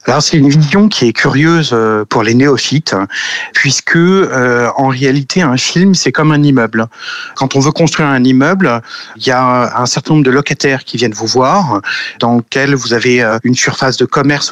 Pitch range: 125-155 Hz